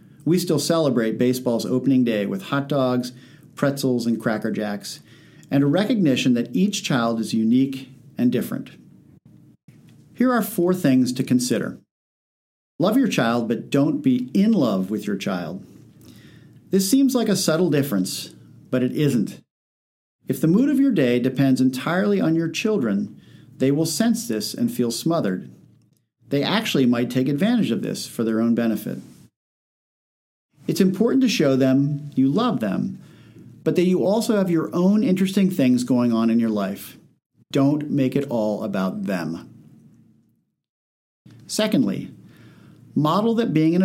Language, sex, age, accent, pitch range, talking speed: English, male, 50-69, American, 120-175 Hz, 150 wpm